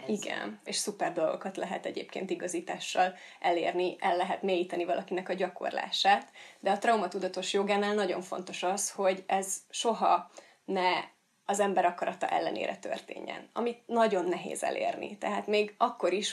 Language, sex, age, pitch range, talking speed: Hungarian, female, 30-49, 185-220 Hz, 140 wpm